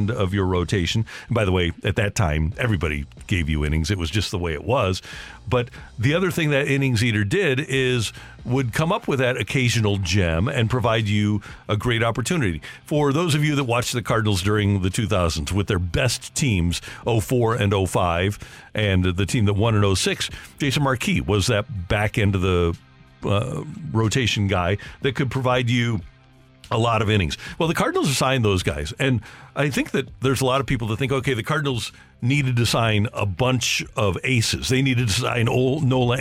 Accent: American